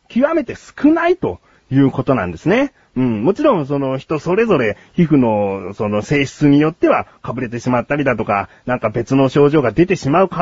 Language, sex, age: Japanese, male, 40-59